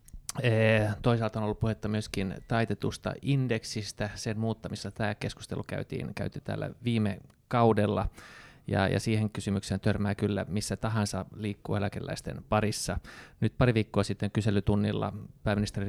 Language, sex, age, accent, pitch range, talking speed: Finnish, male, 30-49, native, 100-120 Hz, 125 wpm